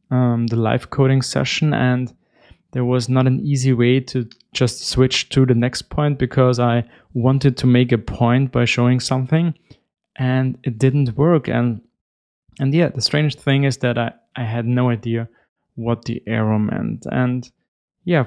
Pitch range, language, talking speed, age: 120-130 Hz, English, 170 wpm, 20-39